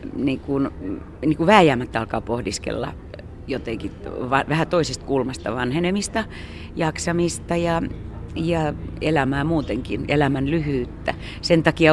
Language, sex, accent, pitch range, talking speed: Finnish, female, native, 125-170 Hz, 105 wpm